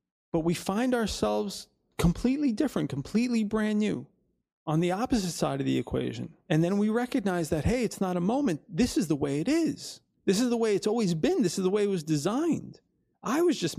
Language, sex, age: English, male, 30-49